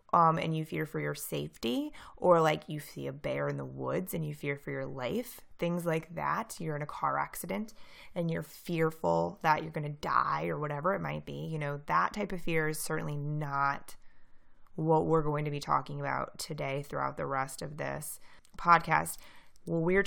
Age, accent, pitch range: 20-39, American, 150-170 Hz